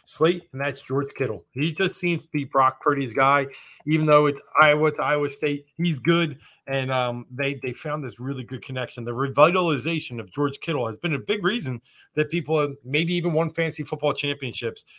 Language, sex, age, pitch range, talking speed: English, male, 30-49, 130-155 Hz, 200 wpm